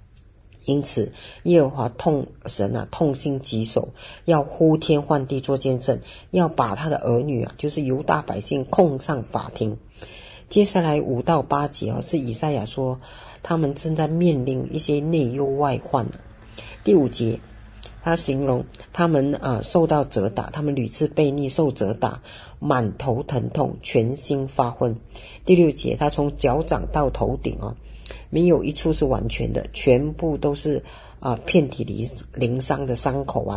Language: Chinese